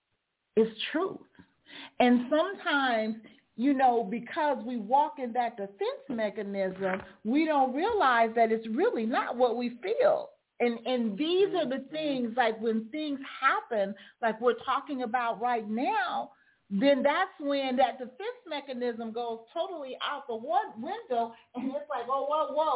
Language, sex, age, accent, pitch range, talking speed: English, female, 40-59, American, 230-305 Hz, 150 wpm